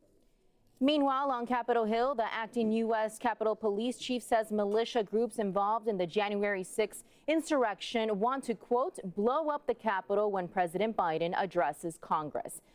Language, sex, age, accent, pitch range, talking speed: English, female, 30-49, American, 185-235 Hz, 145 wpm